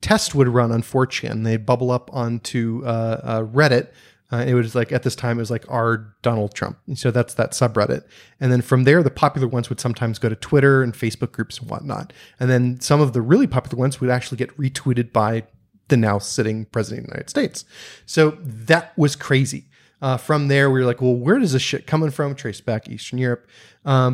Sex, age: male, 30-49